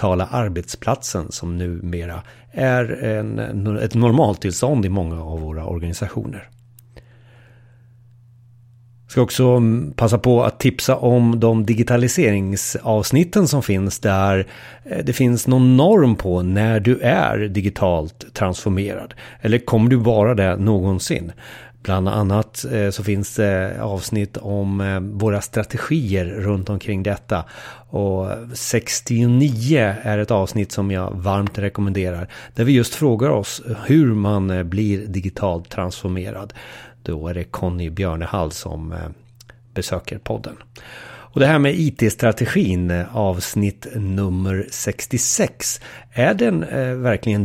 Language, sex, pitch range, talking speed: Swedish, male, 95-120 Hz, 115 wpm